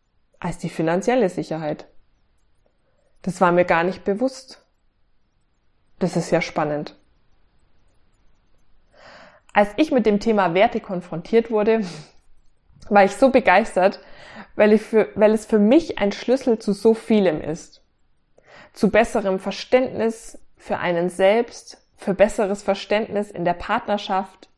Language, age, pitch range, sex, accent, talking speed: German, 20-39, 175-225 Hz, female, German, 120 wpm